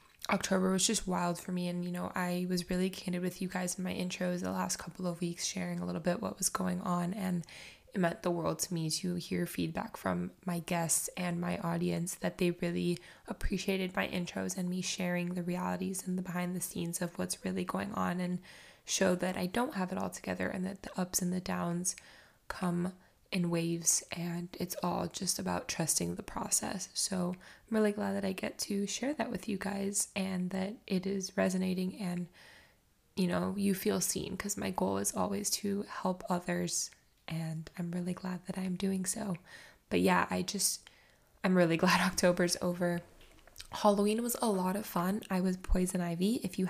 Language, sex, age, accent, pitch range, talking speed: English, female, 10-29, American, 175-190 Hz, 200 wpm